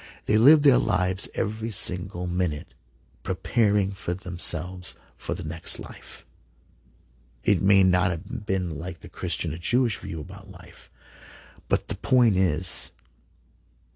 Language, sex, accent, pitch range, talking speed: English, male, American, 80-100 Hz, 135 wpm